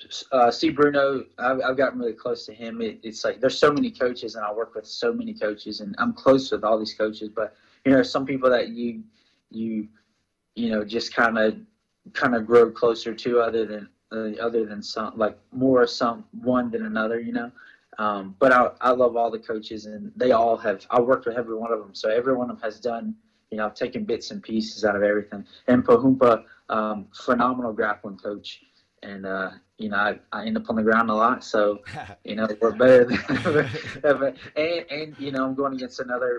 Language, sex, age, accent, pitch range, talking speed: English, male, 20-39, American, 110-130 Hz, 220 wpm